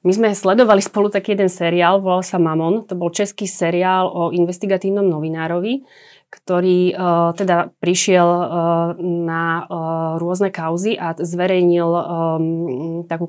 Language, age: Slovak, 30-49